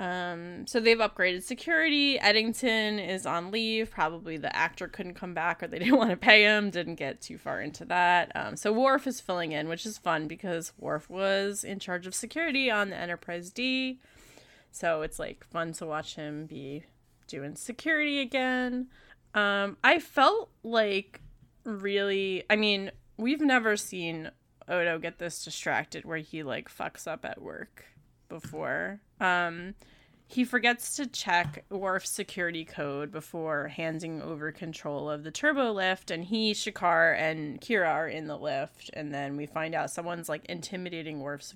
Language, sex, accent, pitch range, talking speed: English, female, American, 160-215 Hz, 165 wpm